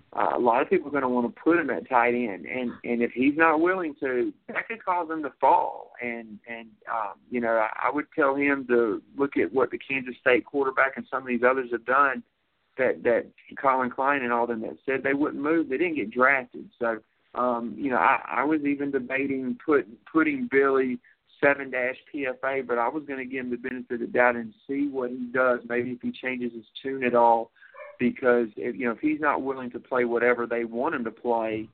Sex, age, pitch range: male, 50-69, 120-140 Hz